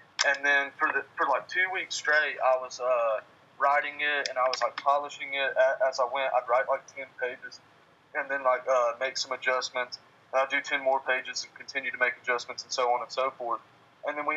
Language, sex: English, male